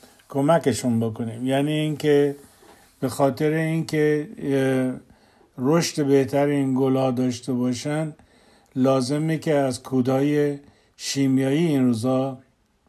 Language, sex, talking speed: Persian, male, 105 wpm